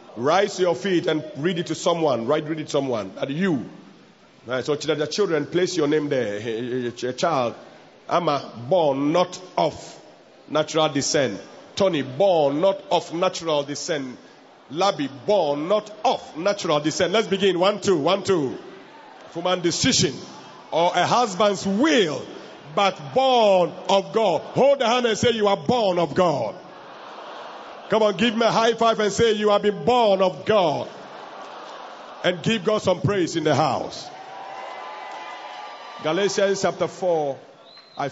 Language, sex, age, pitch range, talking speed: English, male, 50-69, 150-200 Hz, 155 wpm